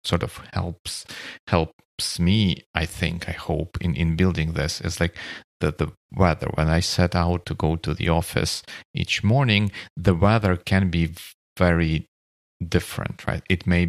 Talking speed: 165 wpm